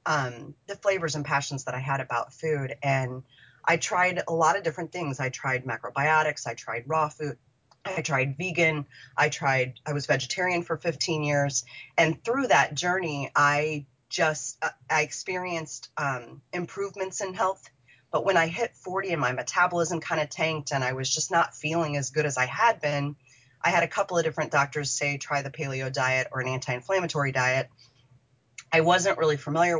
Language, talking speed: English, 185 wpm